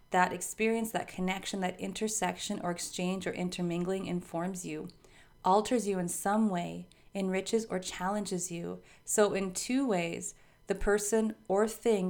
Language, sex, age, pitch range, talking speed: English, female, 30-49, 175-205 Hz, 145 wpm